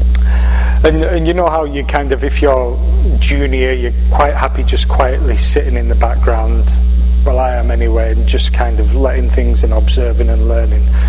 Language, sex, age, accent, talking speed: English, male, 30-49, British, 185 wpm